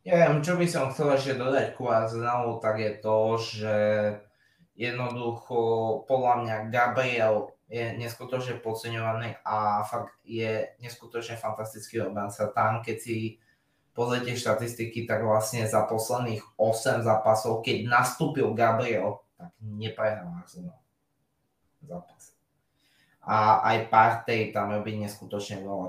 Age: 20-39